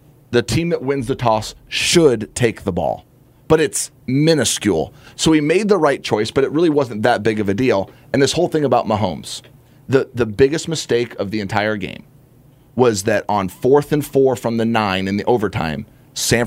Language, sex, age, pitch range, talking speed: English, male, 30-49, 120-150 Hz, 200 wpm